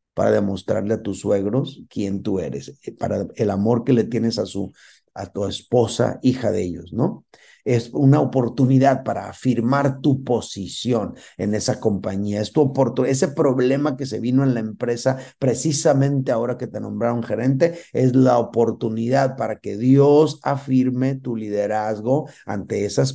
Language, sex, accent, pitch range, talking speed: Spanish, male, Mexican, 110-145 Hz, 150 wpm